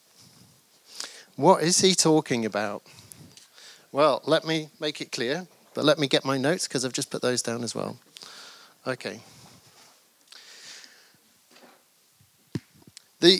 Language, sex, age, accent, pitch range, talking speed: English, male, 30-49, British, 120-160 Hz, 120 wpm